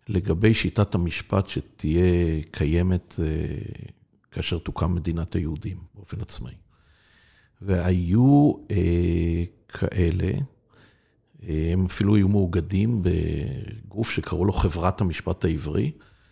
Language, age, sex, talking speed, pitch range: Hebrew, 50-69, male, 95 wpm, 90-110 Hz